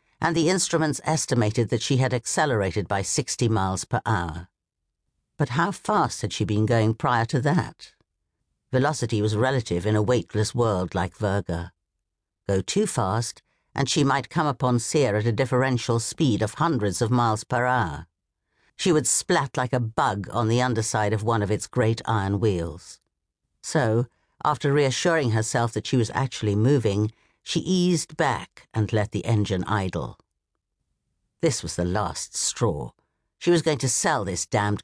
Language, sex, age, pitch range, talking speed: English, female, 60-79, 100-135 Hz, 165 wpm